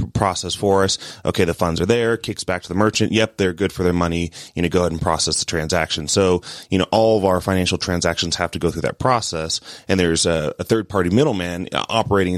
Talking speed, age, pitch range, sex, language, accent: 240 wpm, 30-49, 85-95 Hz, male, English, American